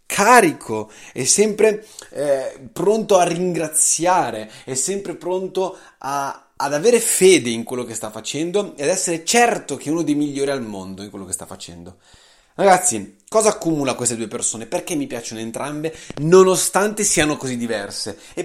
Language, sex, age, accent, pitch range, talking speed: Italian, male, 30-49, native, 105-175 Hz, 165 wpm